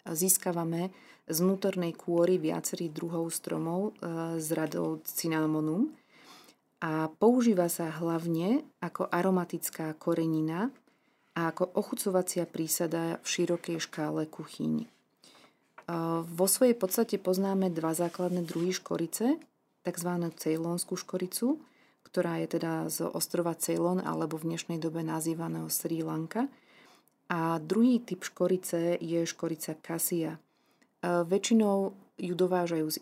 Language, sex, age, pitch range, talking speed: Slovak, female, 30-49, 160-190 Hz, 110 wpm